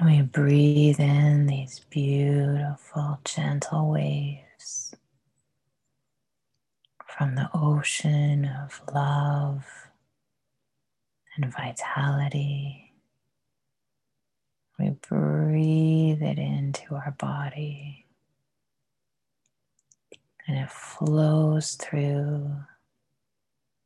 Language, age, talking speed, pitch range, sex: English, 30-49, 65 wpm, 140-155 Hz, female